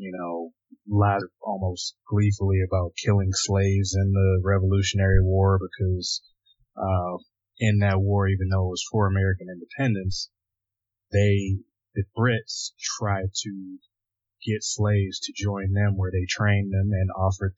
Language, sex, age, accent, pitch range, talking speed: English, male, 20-39, American, 90-105 Hz, 145 wpm